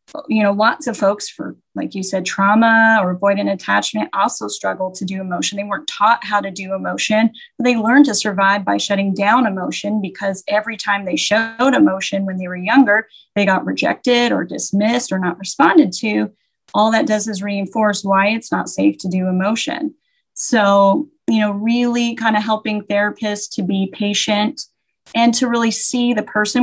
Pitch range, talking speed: 195-235 Hz, 185 wpm